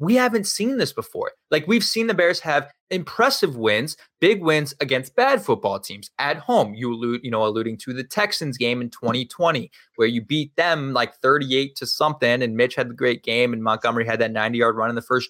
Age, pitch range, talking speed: 20-39, 125-205 Hz, 215 wpm